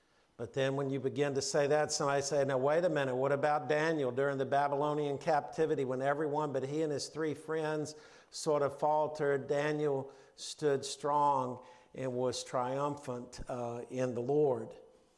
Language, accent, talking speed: English, American, 165 wpm